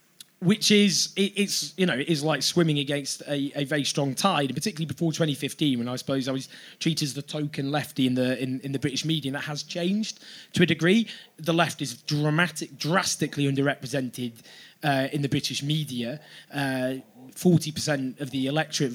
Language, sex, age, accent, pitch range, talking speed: English, male, 20-39, British, 140-170 Hz, 195 wpm